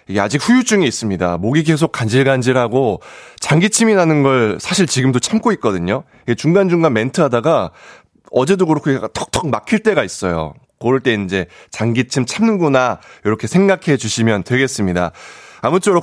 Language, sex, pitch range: Korean, male, 110-180 Hz